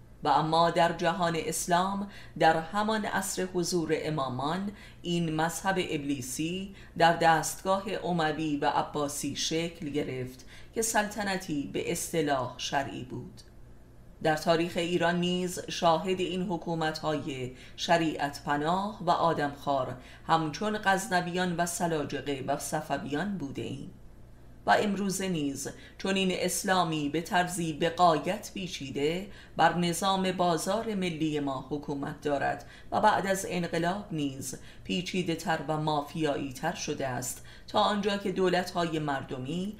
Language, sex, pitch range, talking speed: Persian, female, 150-180 Hz, 120 wpm